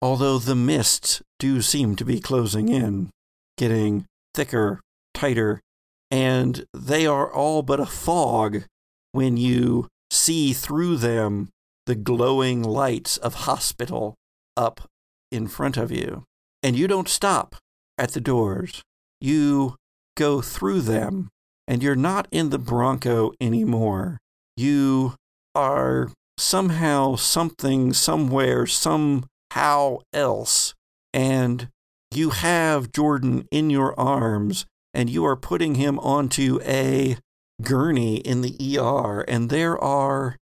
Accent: American